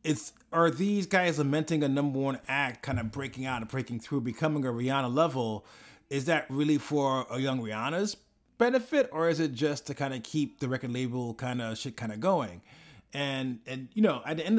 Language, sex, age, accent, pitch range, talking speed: English, male, 30-49, American, 125-155 Hz, 215 wpm